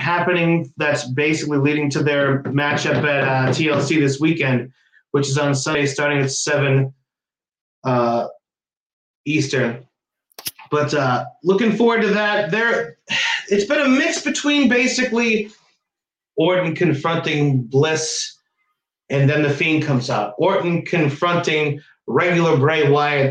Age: 30-49